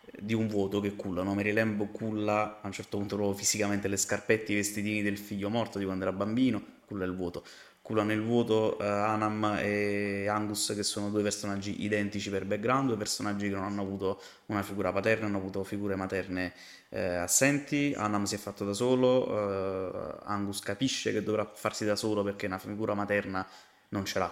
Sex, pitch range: male, 100-110 Hz